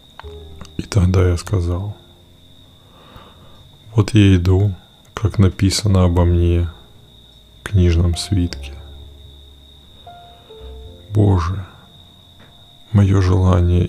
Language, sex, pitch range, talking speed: Russian, male, 85-95 Hz, 70 wpm